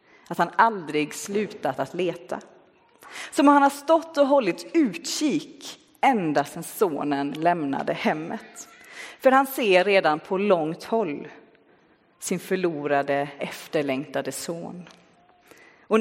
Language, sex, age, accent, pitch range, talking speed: Swedish, female, 30-49, native, 165-245 Hz, 115 wpm